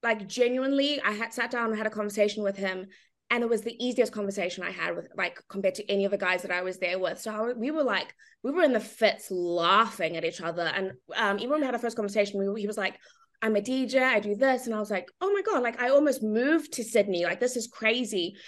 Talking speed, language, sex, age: 265 wpm, English, female, 20-39